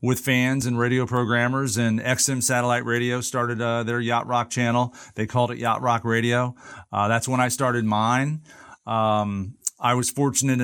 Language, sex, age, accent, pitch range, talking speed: English, male, 40-59, American, 110-130 Hz, 175 wpm